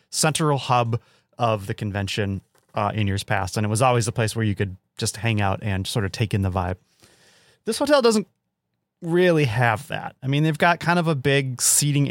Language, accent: English, American